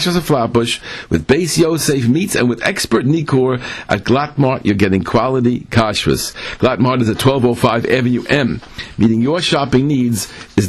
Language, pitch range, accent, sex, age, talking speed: English, 115-140 Hz, American, male, 50-69, 155 wpm